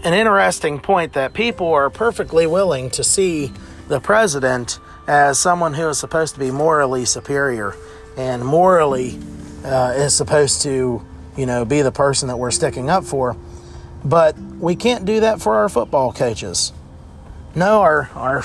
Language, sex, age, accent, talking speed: English, male, 40-59, American, 160 wpm